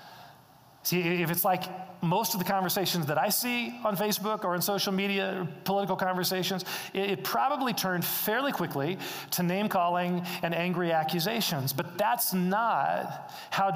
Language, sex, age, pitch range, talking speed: English, male, 40-59, 155-195 Hz, 150 wpm